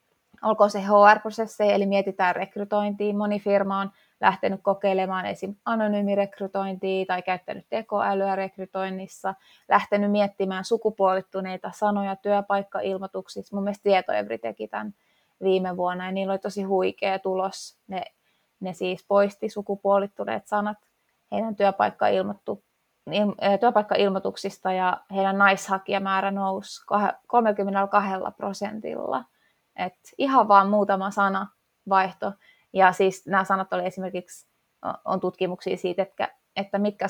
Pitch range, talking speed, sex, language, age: 190-205 Hz, 110 wpm, female, Finnish, 20-39